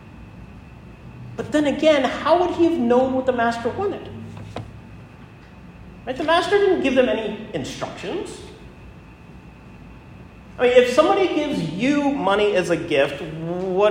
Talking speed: 135 wpm